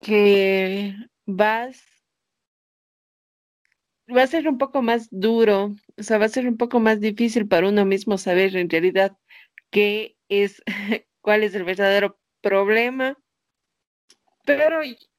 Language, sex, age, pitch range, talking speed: Spanish, female, 30-49, 195-235 Hz, 125 wpm